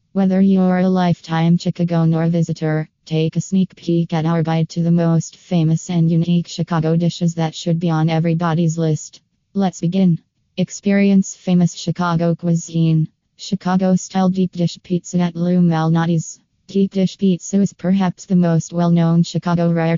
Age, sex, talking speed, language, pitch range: 20-39, female, 155 wpm, English, 165-180 Hz